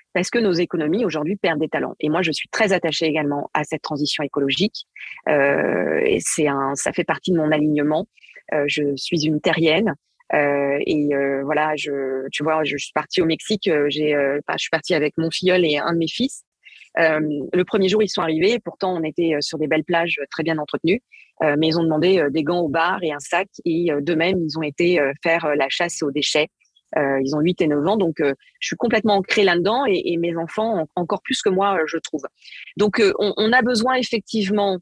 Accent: French